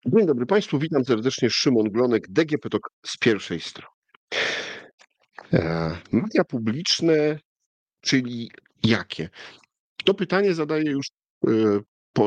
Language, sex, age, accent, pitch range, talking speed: Polish, male, 50-69, native, 95-130 Hz, 100 wpm